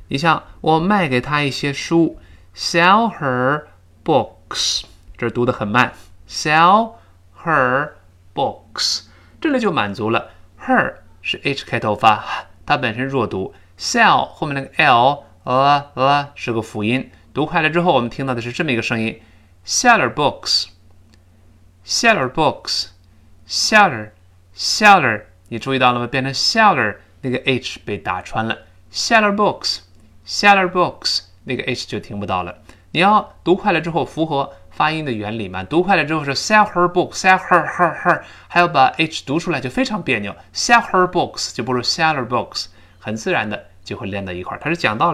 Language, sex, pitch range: Chinese, male, 100-160 Hz